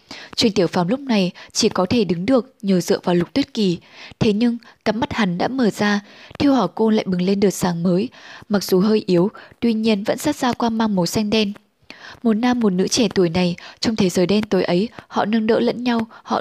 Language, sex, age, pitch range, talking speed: Vietnamese, female, 10-29, 190-230 Hz, 240 wpm